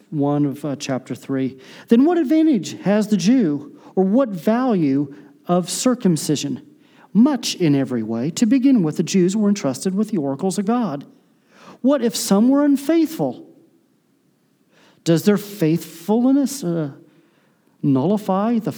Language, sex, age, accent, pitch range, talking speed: Russian, male, 40-59, American, 145-220 Hz, 135 wpm